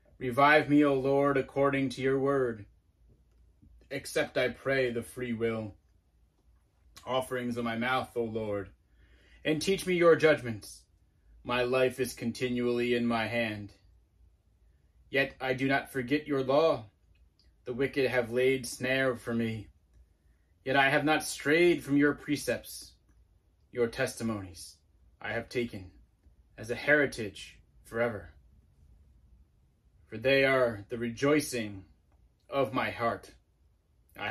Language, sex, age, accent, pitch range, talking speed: English, male, 20-39, American, 80-130 Hz, 125 wpm